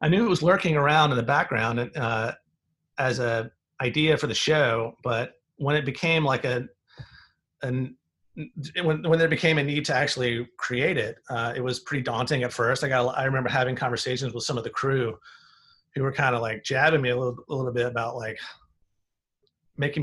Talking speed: 200 wpm